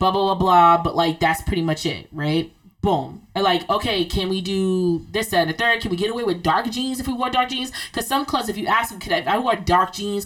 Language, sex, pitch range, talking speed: English, female, 170-210 Hz, 285 wpm